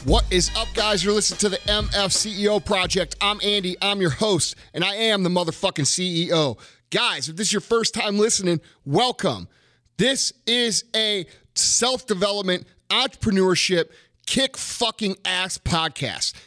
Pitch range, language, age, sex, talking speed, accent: 155-215 Hz, English, 30-49, male, 150 wpm, American